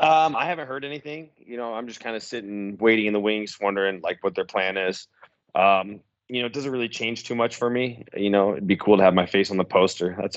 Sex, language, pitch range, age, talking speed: male, English, 100-115 Hz, 20-39, 265 wpm